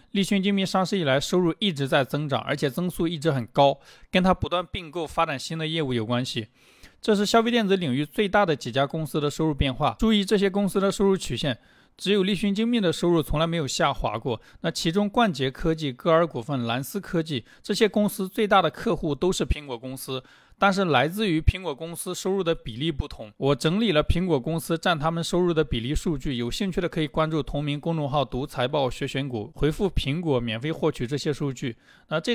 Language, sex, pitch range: Chinese, male, 135-185 Hz